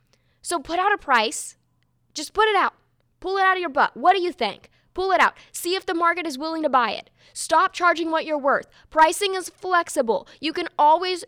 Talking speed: 225 wpm